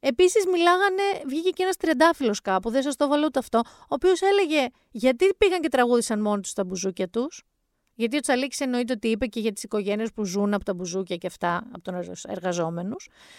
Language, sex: Greek, female